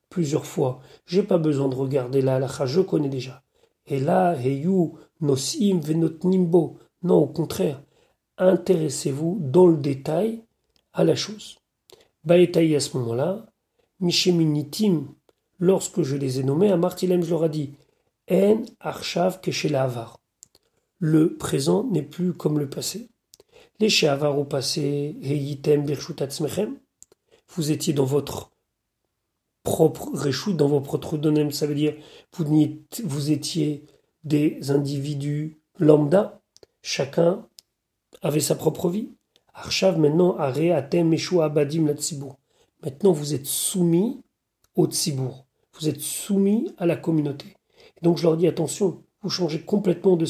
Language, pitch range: French, 145-180 Hz